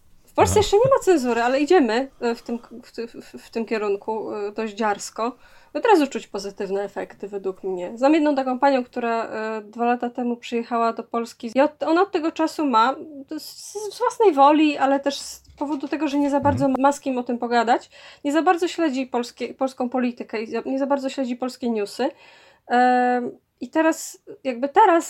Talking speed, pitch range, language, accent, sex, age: 180 wpm, 230-300 Hz, Polish, native, female, 20-39